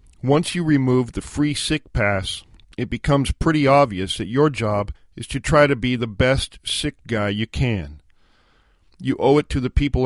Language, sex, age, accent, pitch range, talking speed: English, male, 50-69, American, 100-140 Hz, 185 wpm